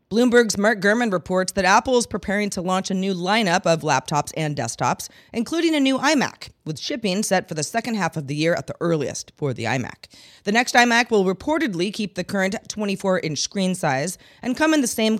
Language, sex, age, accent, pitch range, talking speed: English, female, 40-59, American, 160-215 Hz, 210 wpm